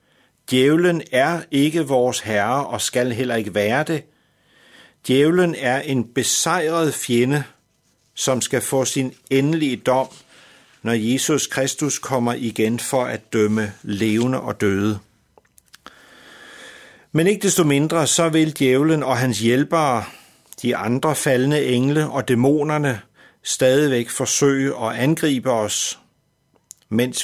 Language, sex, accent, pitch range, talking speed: Danish, male, native, 120-155 Hz, 120 wpm